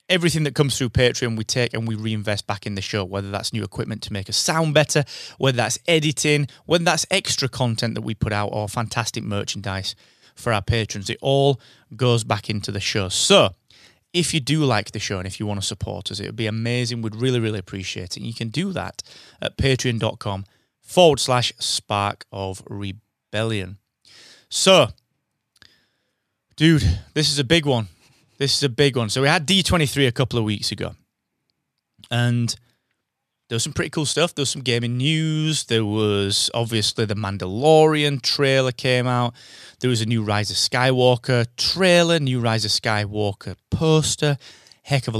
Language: English